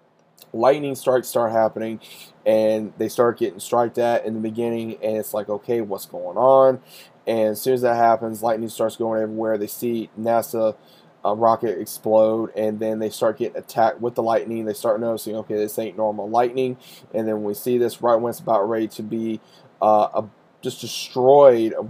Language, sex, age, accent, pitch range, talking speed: English, male, 20-39, American, 110-120 Hz, 190 wpm